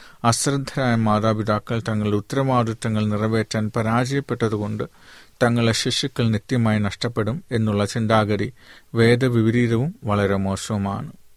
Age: 40-59